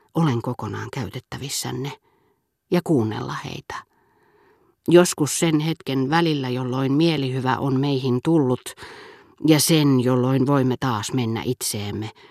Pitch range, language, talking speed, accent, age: 125-160 Hz, Finnish, 105 wpm, native, 40-59